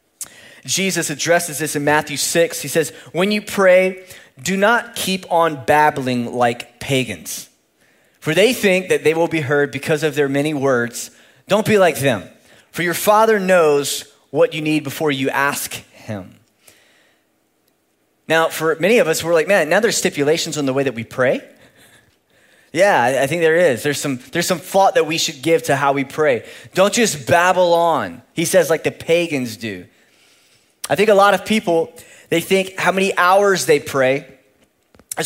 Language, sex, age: English, male, 20-39